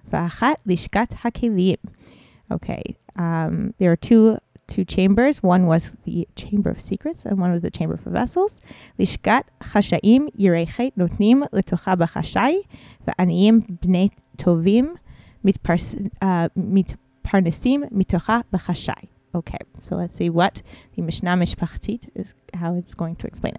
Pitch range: 170-215 Hz